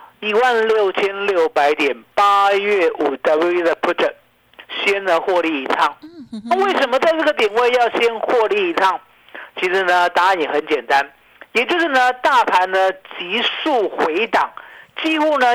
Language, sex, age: Chinese, male, 50-69